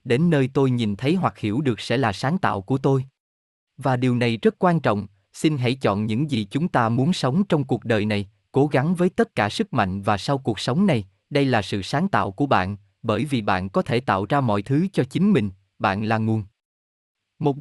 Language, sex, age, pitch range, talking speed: Vietnamese, male, 20-39, 105-150 Hz, 230 wpm